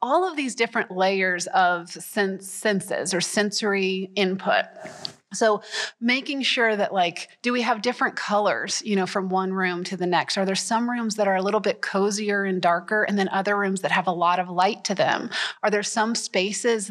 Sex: female